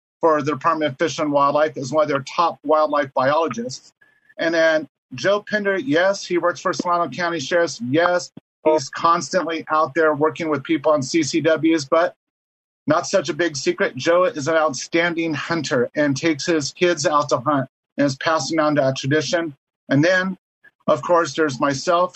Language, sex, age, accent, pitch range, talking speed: English, male, 40-59, American, 145-175 Hz, 175 wpm